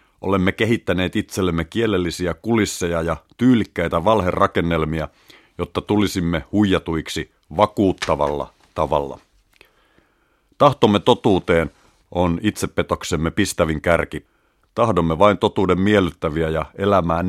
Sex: male